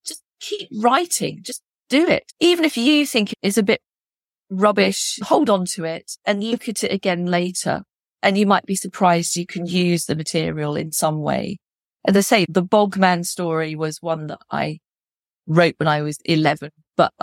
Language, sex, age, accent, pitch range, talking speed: English, female, 40-59, British, 160-210 Hz, 180 wpm